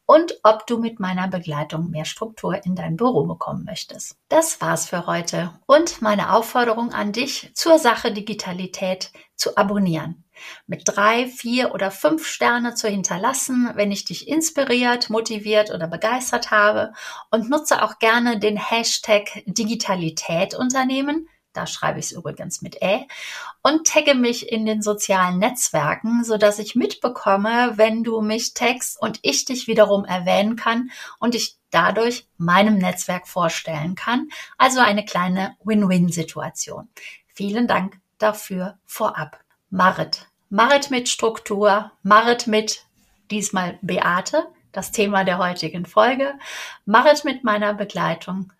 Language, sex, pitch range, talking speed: German, female, 195-245 Hz, 135 wpm